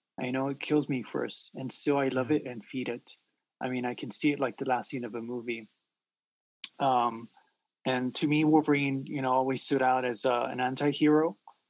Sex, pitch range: male, 120-135 Hz